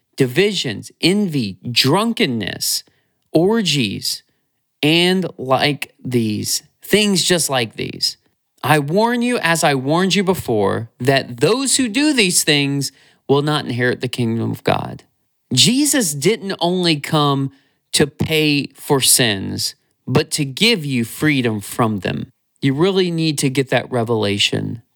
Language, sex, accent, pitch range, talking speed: English, male, American, 120-165 Hz, 130 wpm